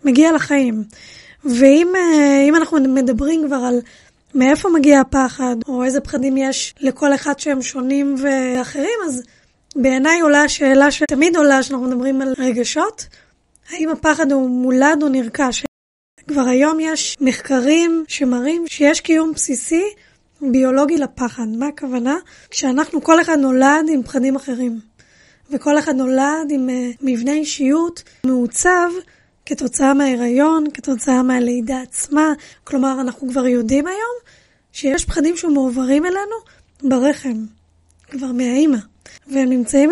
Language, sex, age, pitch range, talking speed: Hebrew, female, 20-39, 255-305 Hz, 120 wpm